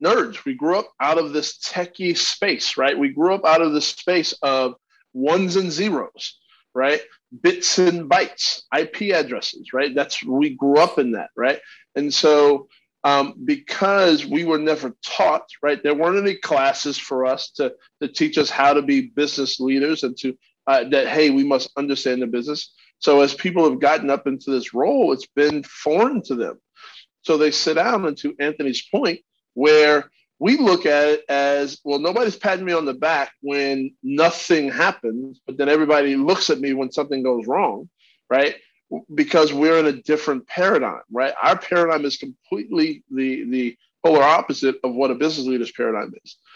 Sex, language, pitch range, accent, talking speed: male, English, 140-180 Hz, American, 180 wpm